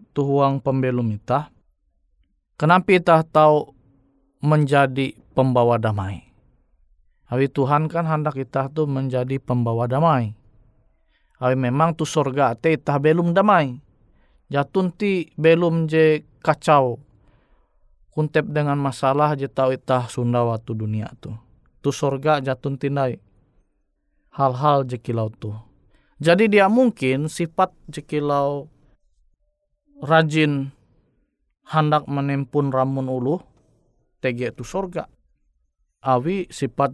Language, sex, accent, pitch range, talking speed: Indonesian, male, native, 120-155 Hz, 100 wpm